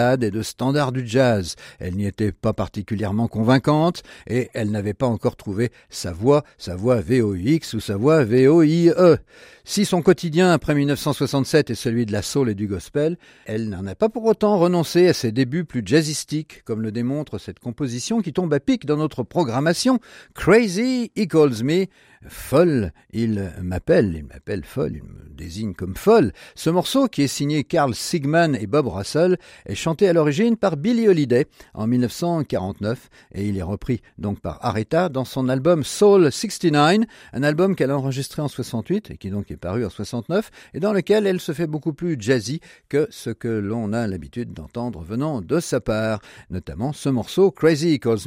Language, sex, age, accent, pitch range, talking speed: French, male, 50-69, French, 110-165 Hz, 190 wpm